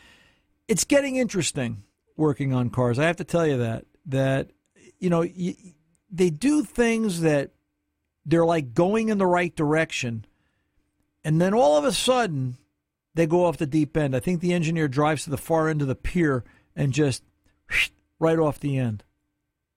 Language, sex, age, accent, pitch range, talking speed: English, male, 50-69, American, 130-175 Hz, 170 wpm